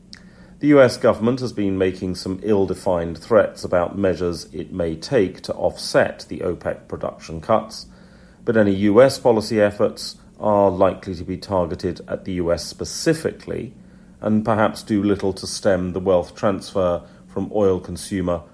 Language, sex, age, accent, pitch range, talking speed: English, male, 40-59, British, 90-110 Hz, 150 wpm